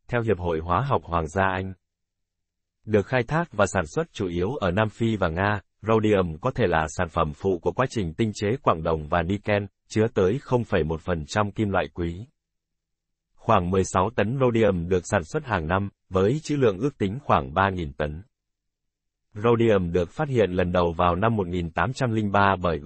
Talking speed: 205 wpm